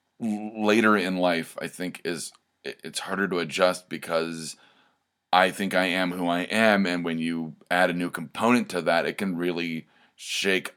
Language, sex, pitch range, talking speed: English, male, 85-100 Hz, 175 wpm